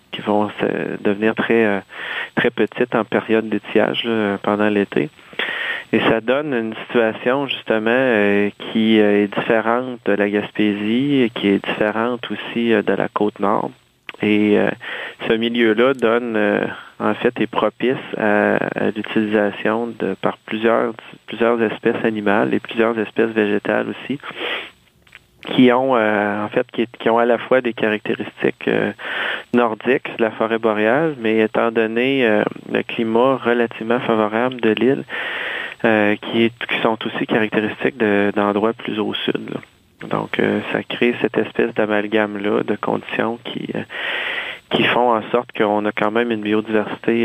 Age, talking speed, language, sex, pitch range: 30-49, 135 wpm, French, male, 105-115 Hz